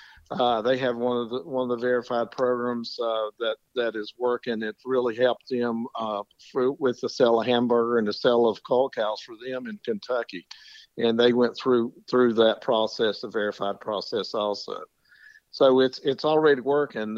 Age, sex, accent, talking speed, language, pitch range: 50-69, male, American, 185 wpm, English, 110-130 Hz